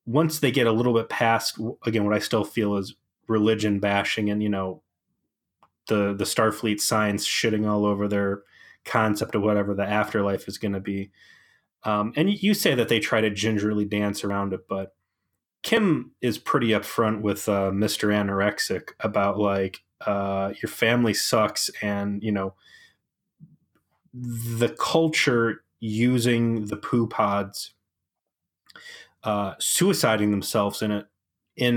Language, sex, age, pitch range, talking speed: English, male, 20-39, 100-115 Hz, 145 wpm